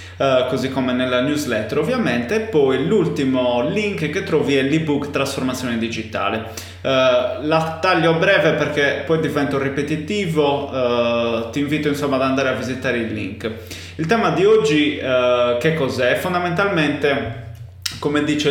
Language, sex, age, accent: Italian, male, 20-39, native